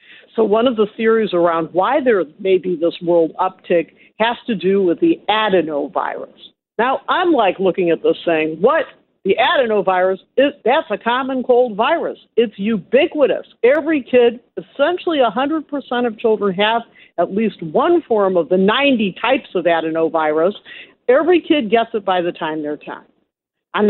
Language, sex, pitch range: English, female, 185-245 Hz